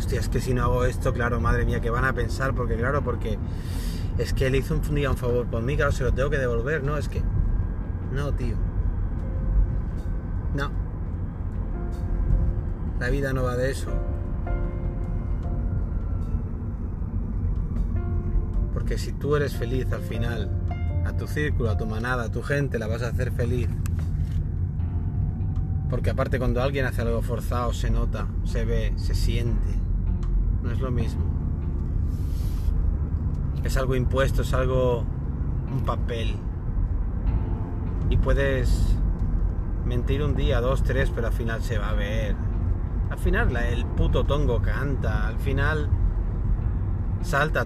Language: Spanish